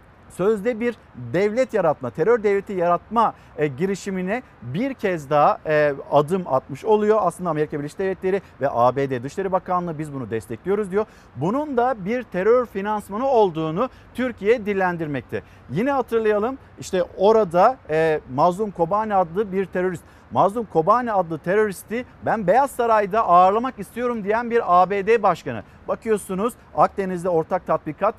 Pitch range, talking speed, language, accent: 160-225 Hz, 135 wpm, Turkish, native